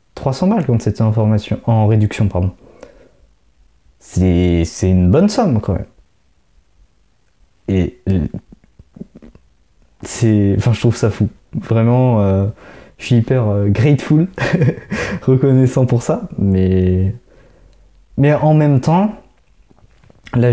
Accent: French